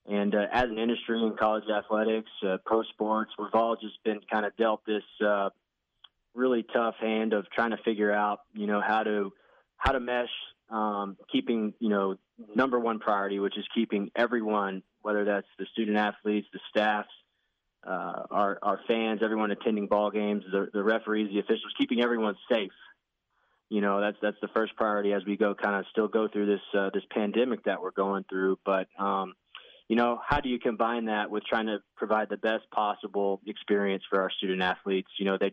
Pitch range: 100-110 Hz